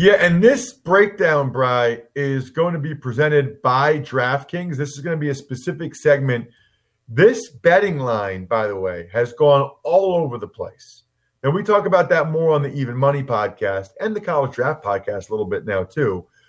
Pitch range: 115-150 Hz